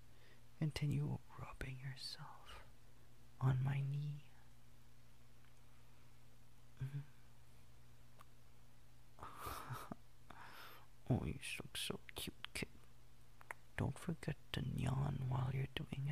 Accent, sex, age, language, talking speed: American, male, 30-49, English, 80 wpm